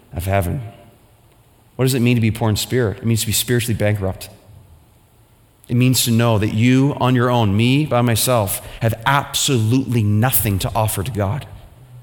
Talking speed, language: 180 wpm, English